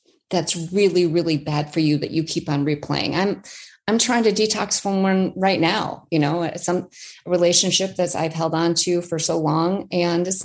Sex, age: female, 30-49